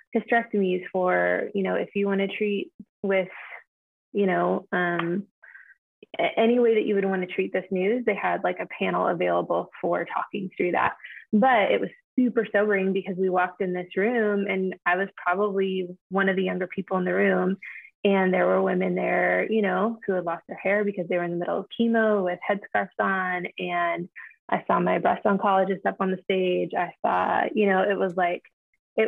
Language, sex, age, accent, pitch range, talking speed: English, female, 20-39, American, 180-205 Hz, 200 wpm